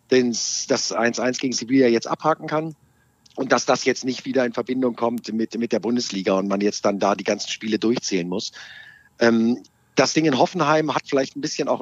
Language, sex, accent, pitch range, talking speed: German, male, German, 125-145 Hz, 205 wpm